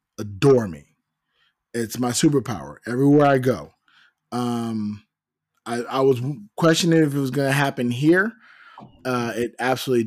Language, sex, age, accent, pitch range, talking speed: English, male, 20-39, American, 115-140 Hz, 130 wpm